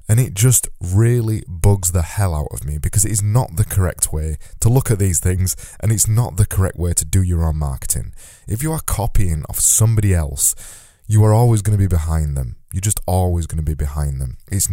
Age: 20-39